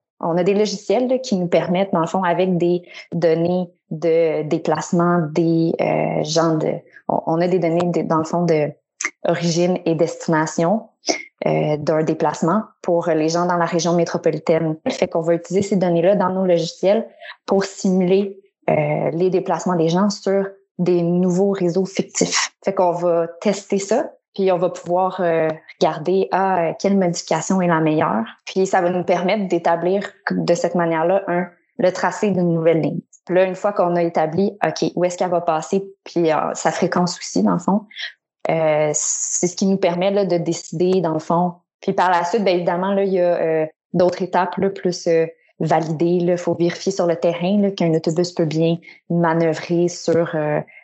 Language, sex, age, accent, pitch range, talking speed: French, female, 20-39, Canadian, 165-190 Hz, 190 wpm